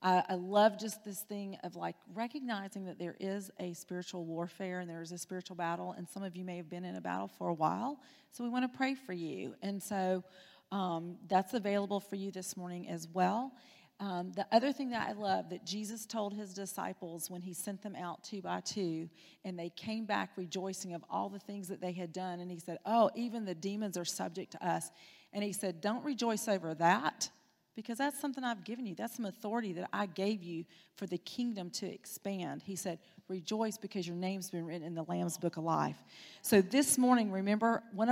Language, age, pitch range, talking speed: English, 40-59, 175-210 Hz, 220 wpm